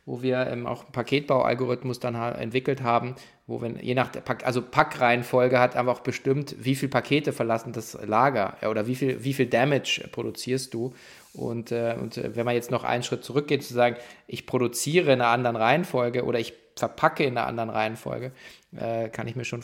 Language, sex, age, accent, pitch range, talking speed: German, male, 20-39, German, 120-150 Hz, 200 wpm